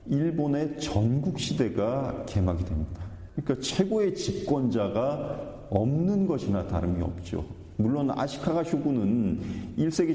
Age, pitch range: 40-59, 100-140 Hz